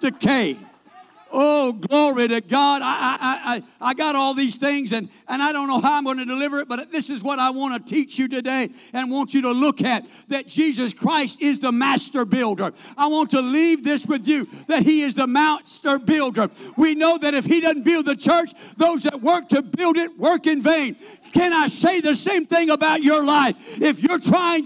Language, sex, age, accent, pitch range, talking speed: English, male, 50-69, American, 250-315 Hz, 220 wpm